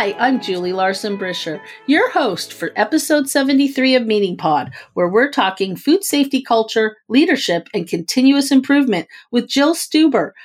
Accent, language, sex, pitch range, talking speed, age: American, English, female, 180-270 Hz, 145 wpm, 50-69